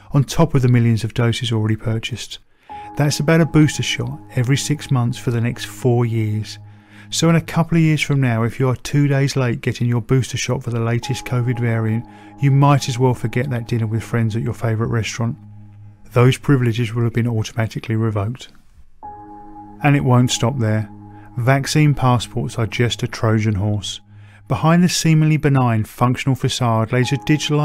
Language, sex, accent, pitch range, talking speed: English, male, British, 110-130 Hz, 185 wpm